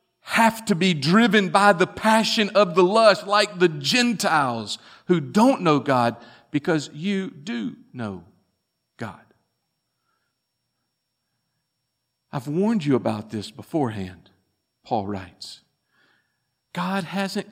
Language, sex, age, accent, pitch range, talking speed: English, male, 50-69, American, 135-195 Hz, 110 wpm